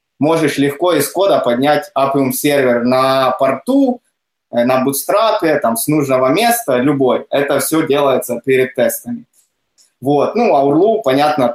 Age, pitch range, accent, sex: 20-39, 130-155 Hz, native, male